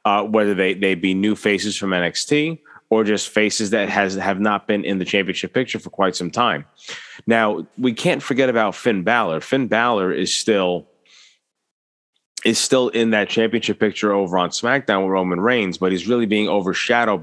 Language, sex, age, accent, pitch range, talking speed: English, male, 30-49, American, 95-110 Hz, 185 wpm